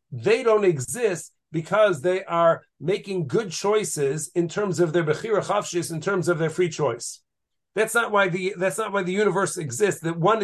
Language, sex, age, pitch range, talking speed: English, male, 50-69, 160-195 Hz, 190 wpm